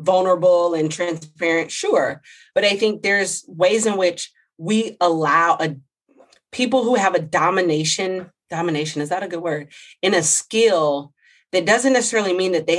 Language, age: English, 30-49